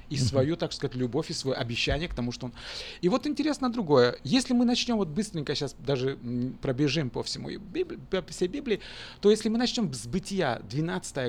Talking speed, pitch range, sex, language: 185 wpm, 130-215 Hz, male, Russian